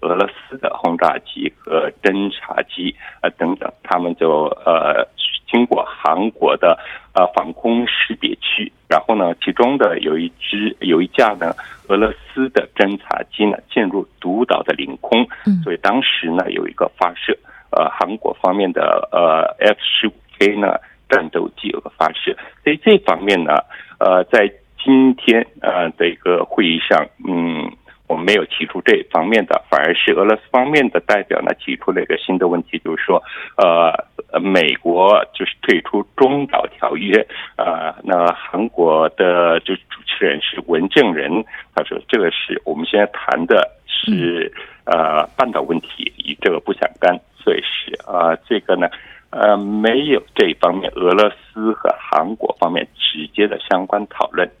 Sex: male